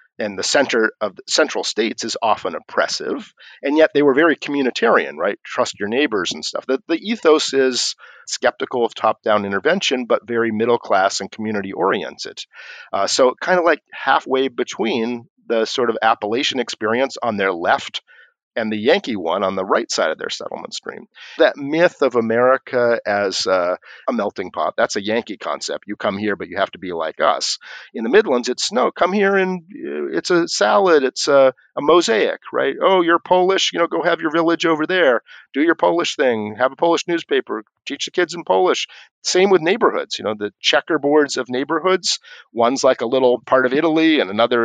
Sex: male